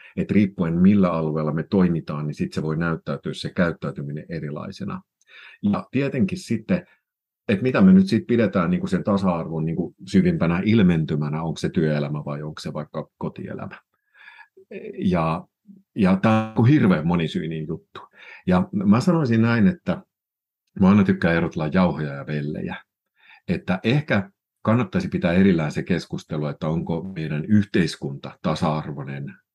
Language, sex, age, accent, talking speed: Finnish, male, 50-69, native, 140 wpm